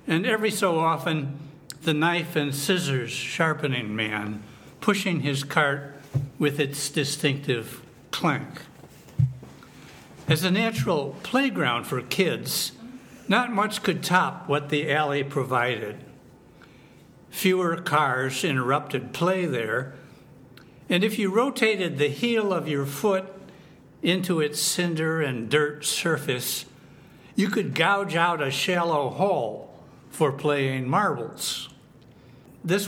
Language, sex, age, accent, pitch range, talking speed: English, male, 60-79, American, 140-185 Hz, 110 wpm